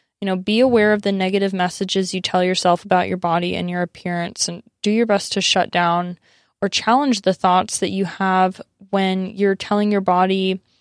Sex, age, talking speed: female, 20-39, 200 wpm